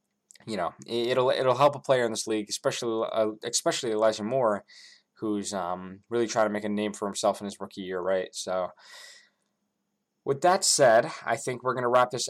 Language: English